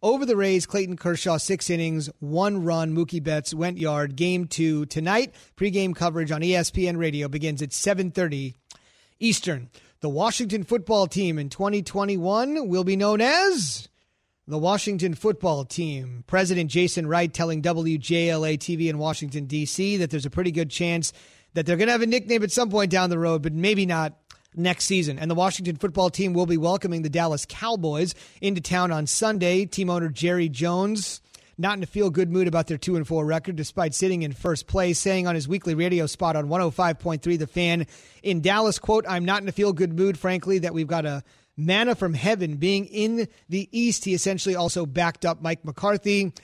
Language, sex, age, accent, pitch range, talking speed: English, male, 30-49, American, 160-190 Hz, 190 wpm